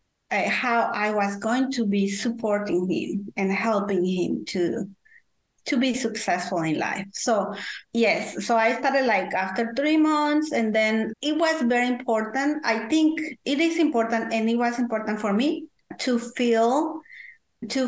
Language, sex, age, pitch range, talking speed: English, female, 30-49, 190-240 Hz, 160 wpm